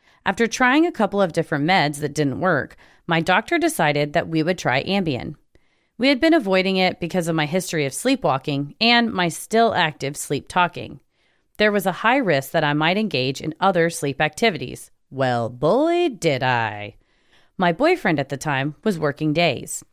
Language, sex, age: English, female, 30-49